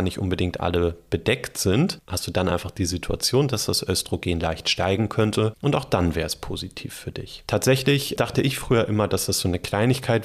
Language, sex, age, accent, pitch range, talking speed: German, male, 30-49, German, 90-120 Hz, 205 wpm